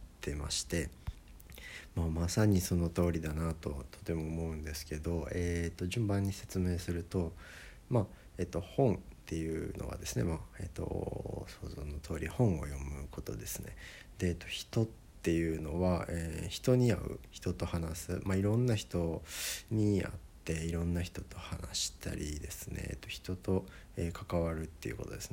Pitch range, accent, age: 80-95 Hz, native, 50-69